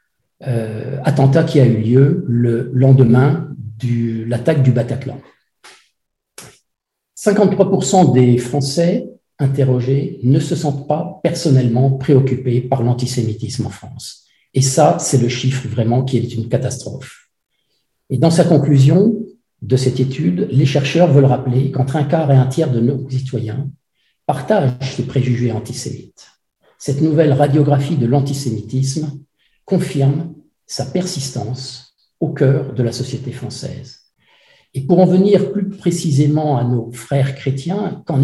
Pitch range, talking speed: 125-160 Hz, 135 wpm